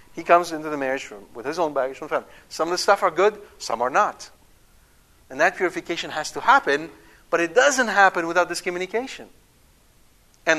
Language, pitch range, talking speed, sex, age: English, 145-195 Hz, 200 wpm, male, 50-69